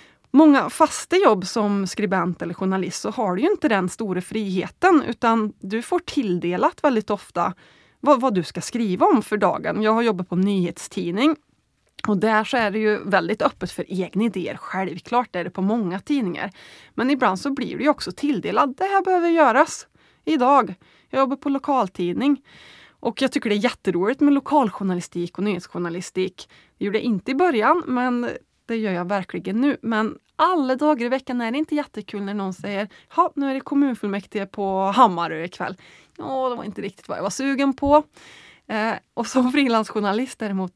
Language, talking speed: Swedish, 185 wpm